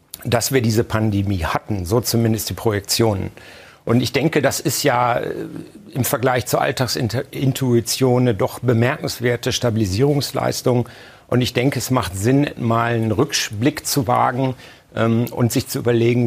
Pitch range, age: 115-135 Hz, 60-79